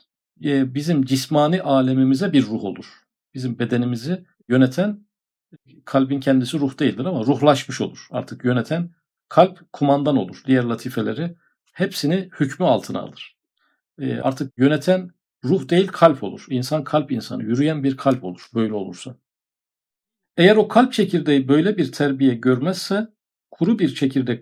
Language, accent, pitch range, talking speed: Turkish, native, 125-160 Hz, 130 wpm